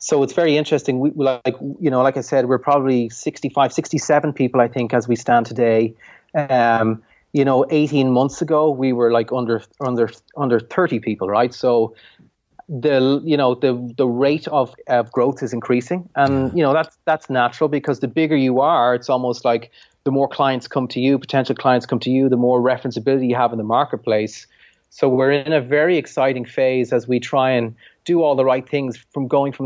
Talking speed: 205 wpm